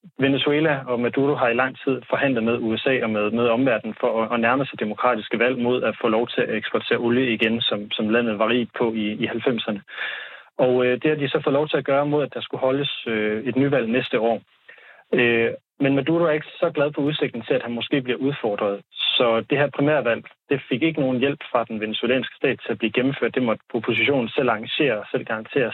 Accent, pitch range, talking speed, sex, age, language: native, 115-145 Hz, 235 wpm, male, 30-49, Danish